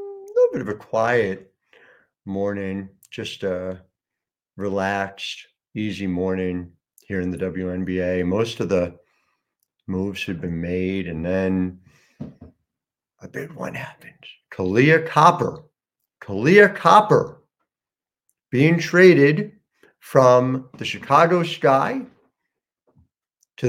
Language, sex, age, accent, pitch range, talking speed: English, male, 50-69, American, 95-150 Hz, 95 wpm